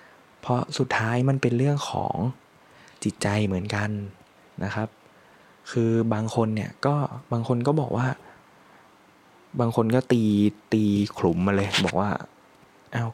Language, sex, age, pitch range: Thai, male, 20-39, 100-120 Hz